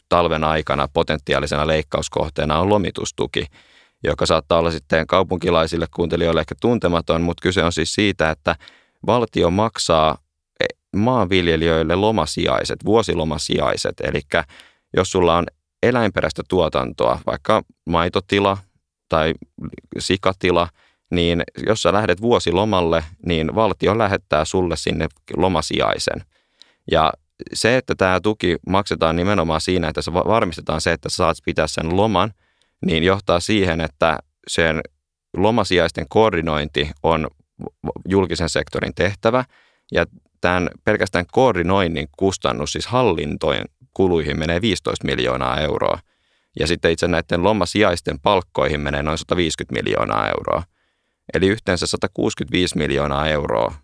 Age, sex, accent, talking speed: 30-49, male, native, 115 wpm